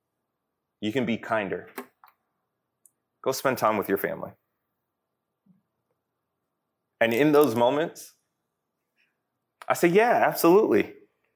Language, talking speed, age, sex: English, 95 wpm, 30-49, male